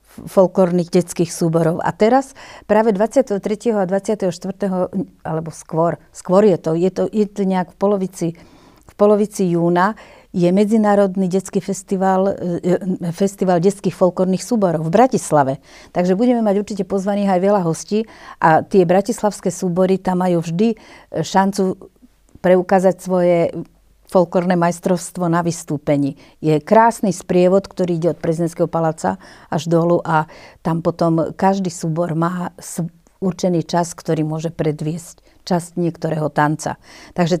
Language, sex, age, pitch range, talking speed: Slovak, female, 50-69, 170-200 Hz, 130 wpm